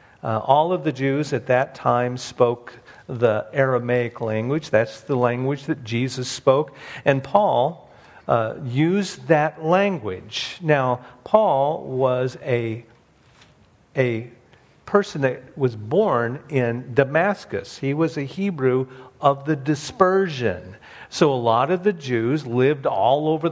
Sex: male